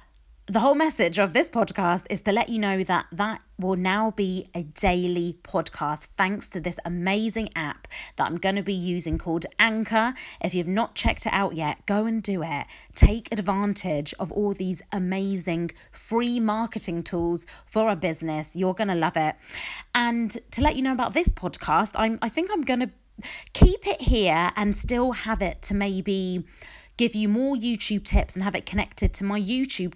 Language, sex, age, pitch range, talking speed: English, female, 30-49, 175-220 Hz, 190 wpm